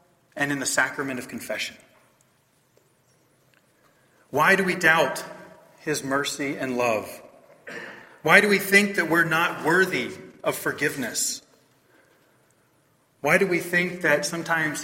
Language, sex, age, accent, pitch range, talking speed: English, male, 30-49, American, 140-175 Hz, 120 wpm